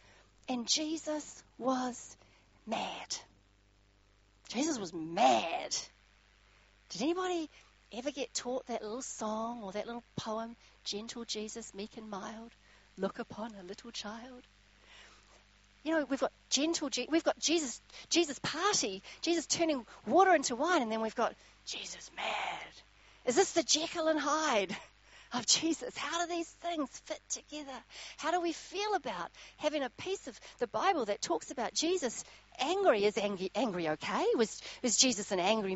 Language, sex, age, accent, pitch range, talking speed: English, female, 40-59, Australian, 200-310 Hz, 150 wpm